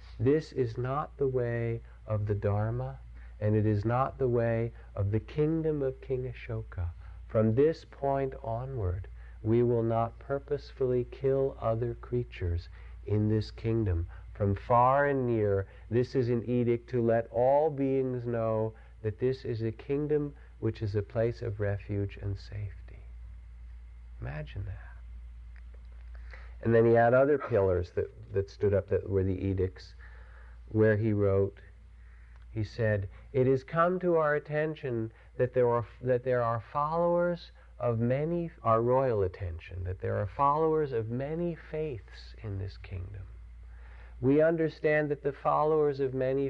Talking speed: 150 wpm